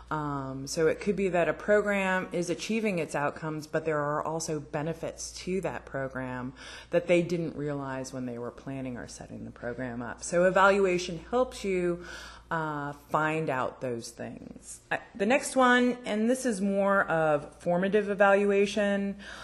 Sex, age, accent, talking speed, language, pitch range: female, 30-49, American, 160 wpm, English, 150-190 Hz